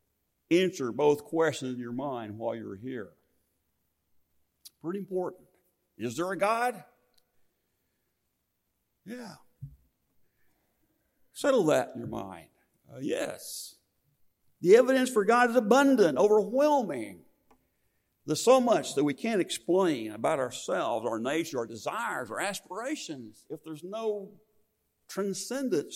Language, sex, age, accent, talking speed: English, male, 50-69, American, 115 wpm